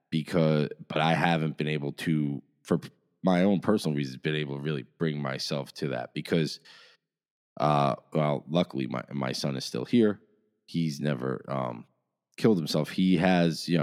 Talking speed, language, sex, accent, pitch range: 165 wpm, English, male, American, 70-80 Hz